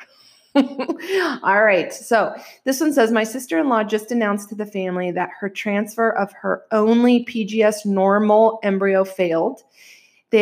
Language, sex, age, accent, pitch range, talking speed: English, female, 30-49, American, 185-245 Hz, 140 wpm